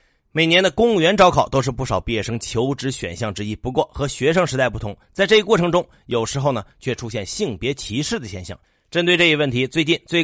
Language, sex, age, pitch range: Chinese, male, 30-49, 115-155 Hz